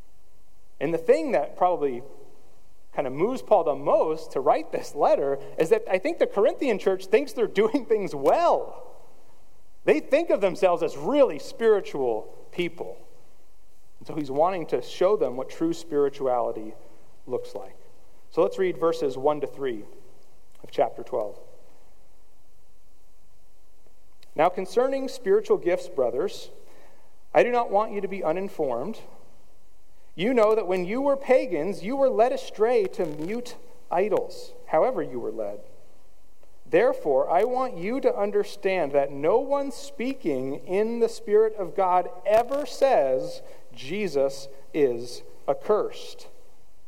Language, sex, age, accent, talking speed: English, male, 40-59, American, 140 wpm